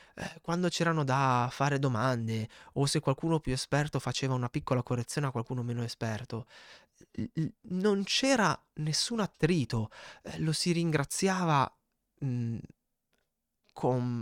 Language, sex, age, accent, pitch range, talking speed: Italian, male, 20-39, native, 115-155 Hz, 125 wpm